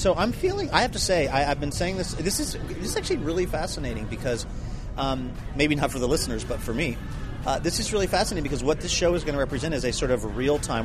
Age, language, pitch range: 30-49, English, 110-145 Hz